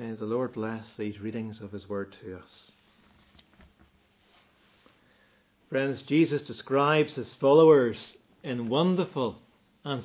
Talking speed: 115 wpm